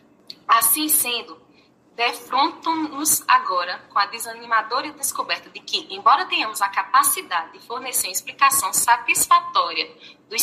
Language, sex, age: Portuguese, female, 20-39